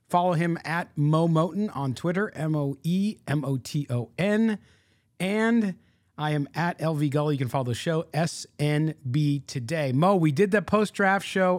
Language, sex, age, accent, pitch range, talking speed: English, male, 40-59, American, 130-180 Hz, 140 wpm